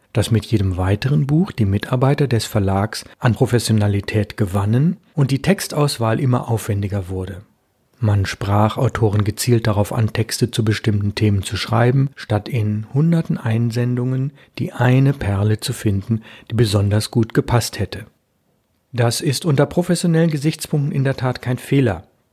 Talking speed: 145 wpm